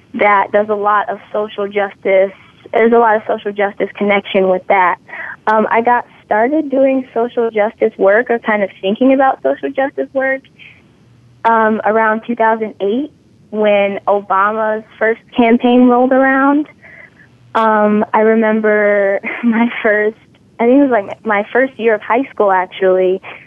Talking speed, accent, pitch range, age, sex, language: 150 wpm, American, 195-225 Hz, 20-39, female, English